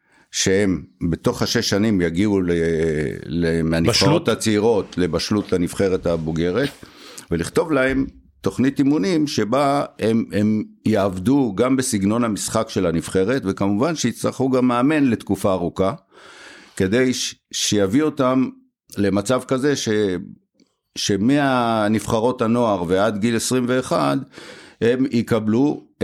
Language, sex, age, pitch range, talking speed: Hebrew, male, 60-79, 95-120 Hz, 95 wpm